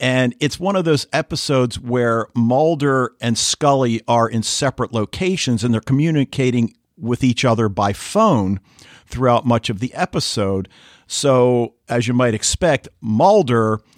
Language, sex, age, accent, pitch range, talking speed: English, male, 50-69, American, 100-125 Hz, 140 wpm